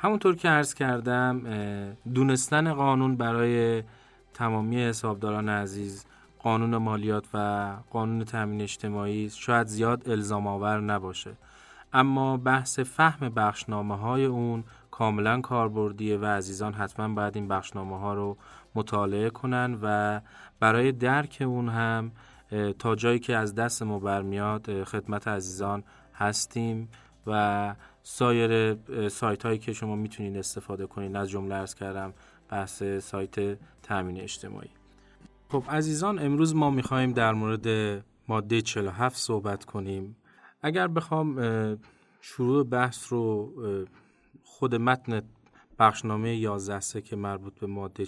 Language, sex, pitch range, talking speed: Persian, male, 105-125 Hz, 115 wpm